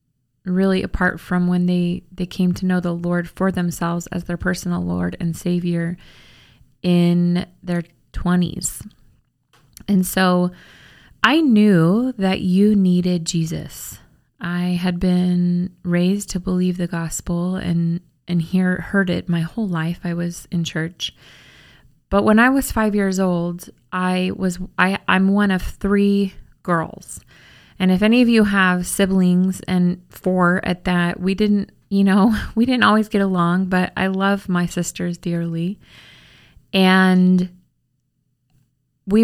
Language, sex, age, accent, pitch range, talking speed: English, female, 20-39, American, 175-195 Hz, 140 wpm